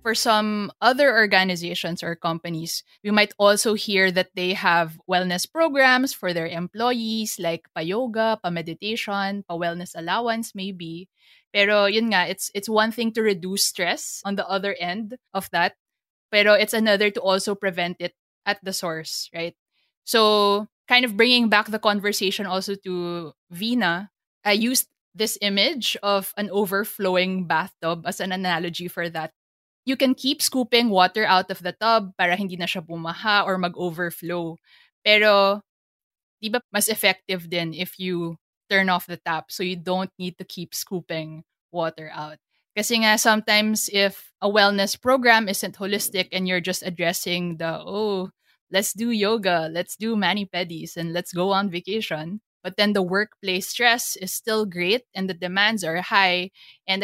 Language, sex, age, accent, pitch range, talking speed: English, female, 20-39, Filipino, 175-210 Hz, 155 wpm